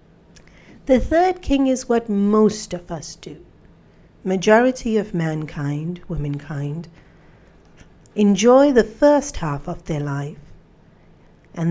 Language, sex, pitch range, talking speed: English, female, 155-200 Hz, 110 wpm